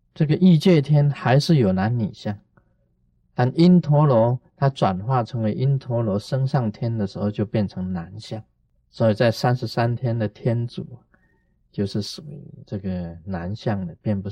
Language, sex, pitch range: Chinese, male, 100-130 Hz